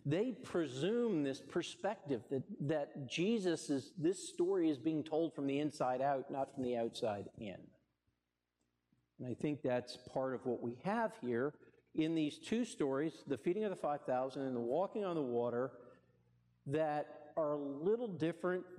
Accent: American